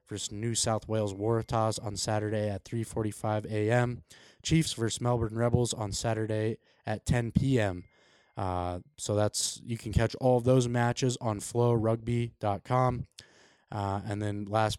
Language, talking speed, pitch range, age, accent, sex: English, 140 wpm, 105-120 Hz, 20-39, American, male